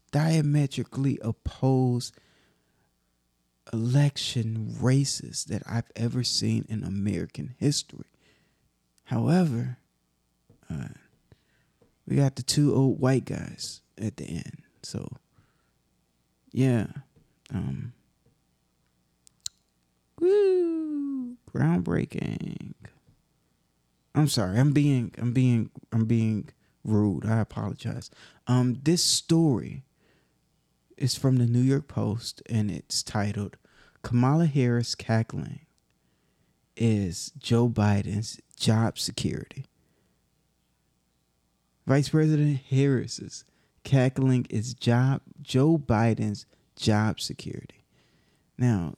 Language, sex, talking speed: English, male, 85 wpm